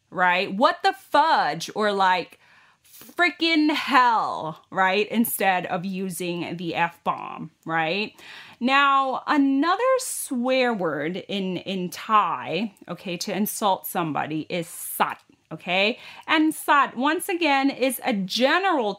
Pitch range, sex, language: 180-265 Hz, female, Thai